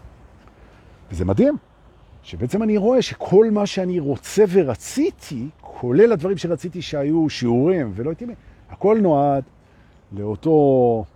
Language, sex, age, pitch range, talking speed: Hebrew, male, 50-69, 105-160 Hz, 110 wpm